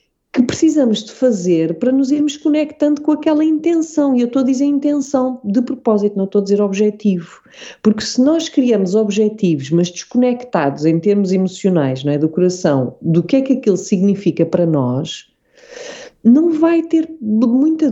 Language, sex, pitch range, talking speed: English, female, 185-275 Hz, 165 wpm